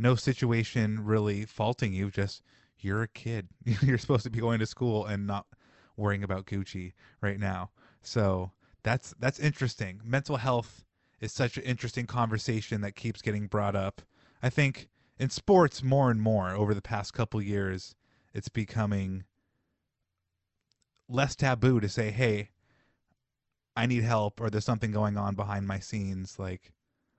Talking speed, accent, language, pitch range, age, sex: 155 wpm, American, English, 100-125 Hz, 20-39, male